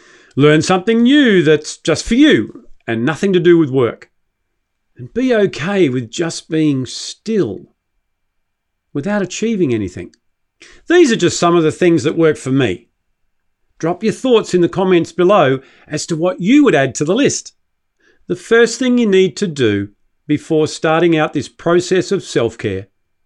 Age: 50-69